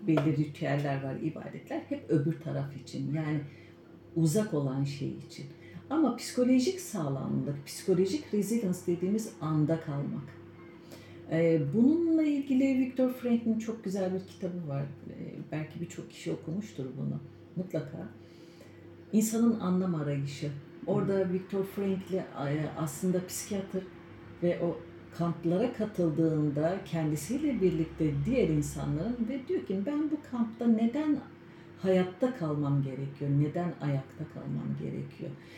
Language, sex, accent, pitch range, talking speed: Turkish, female, native, 155-215 Hz, 110 wpm